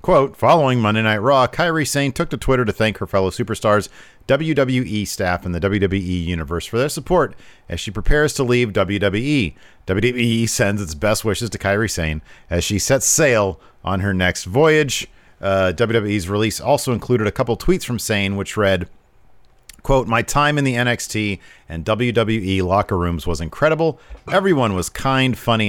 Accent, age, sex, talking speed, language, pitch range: American, 40-59, male, 175 wpm, English, 90-120 Hz